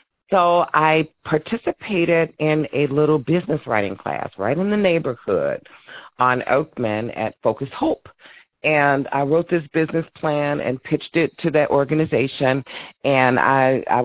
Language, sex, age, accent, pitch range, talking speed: English, female, 40-59, American, 125-160 Hz, 140 wpm